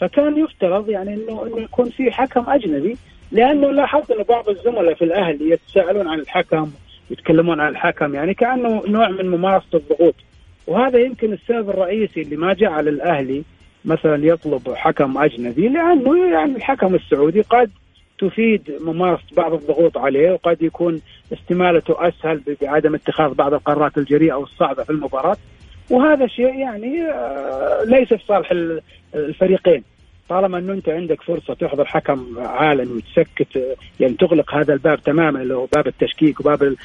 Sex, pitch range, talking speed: male, 160-235 Hz, 145 wpm